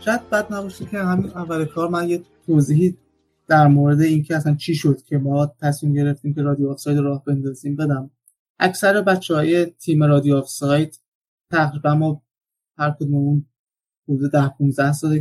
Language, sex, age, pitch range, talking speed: Persian, male, 20-39, 140-165 Hz, 160 wpm